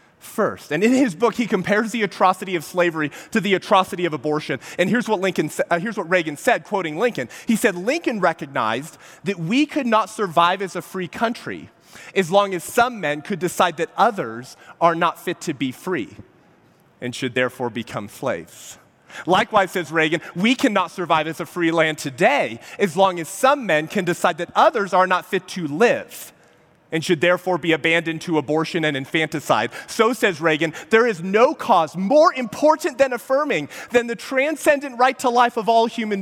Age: 30-49